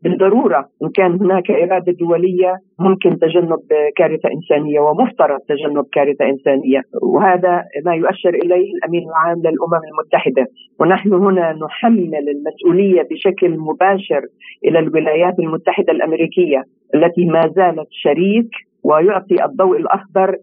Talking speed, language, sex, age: 115 wpm, Arabic, female, 40-59